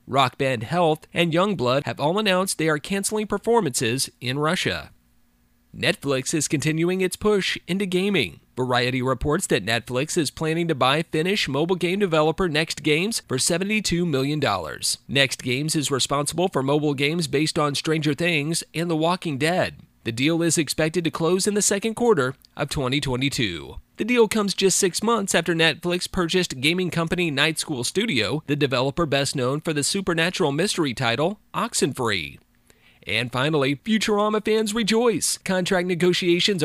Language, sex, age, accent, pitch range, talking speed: English, male, 30-49, American, 140-185 Hz, 155 wpm